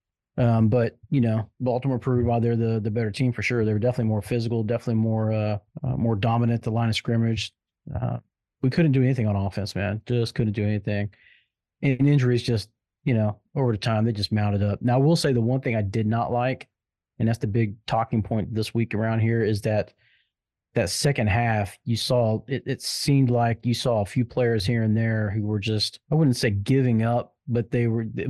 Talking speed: 225 wpm